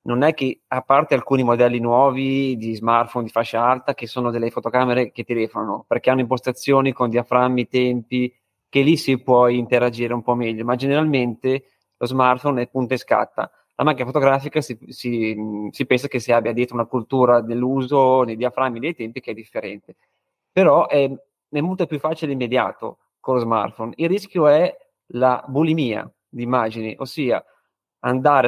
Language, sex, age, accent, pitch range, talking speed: Italian, male, 20-39, native, 120-140 Hz, 175 wpm